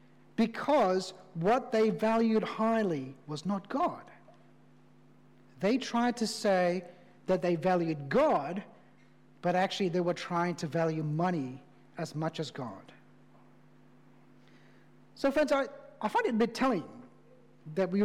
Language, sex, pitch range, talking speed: English, male, 180-240 Hz, 130 wpm